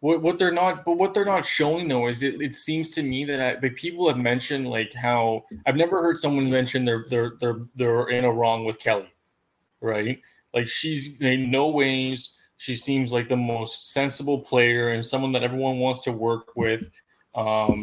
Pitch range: 115-140 Hz